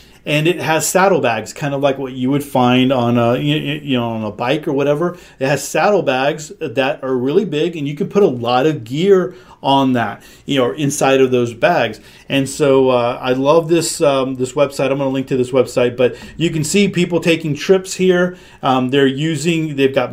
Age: 40-59